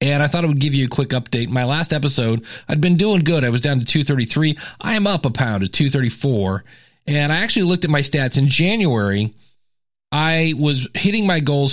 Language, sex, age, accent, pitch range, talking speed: English, male, 40-59, American, 130-165 Hz, 220 wpm